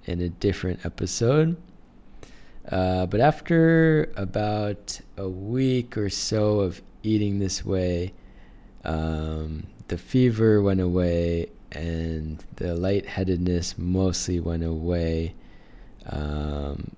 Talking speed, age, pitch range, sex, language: 100 wpm, 20-39, 85-100 Hz, male, English